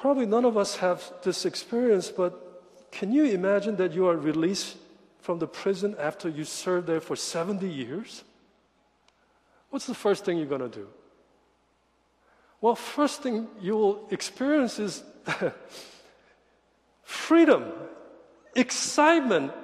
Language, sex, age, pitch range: Korean, male, 50-69, 165-215 Hz